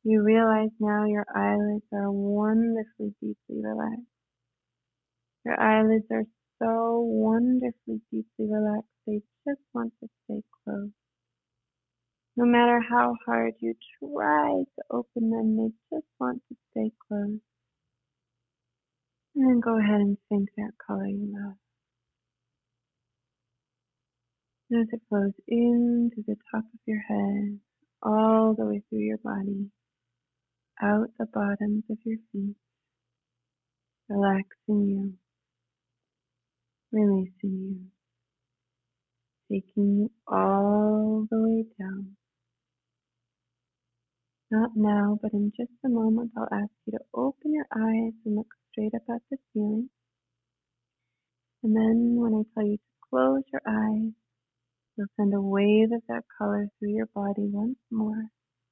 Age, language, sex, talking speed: 20-39, English, female, 125 wpm